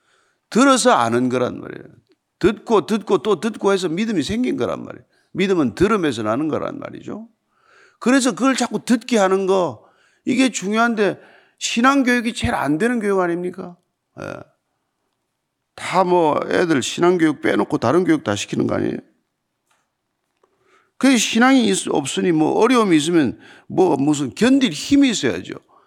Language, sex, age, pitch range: Korean, male, 50-69, 160-230 Hz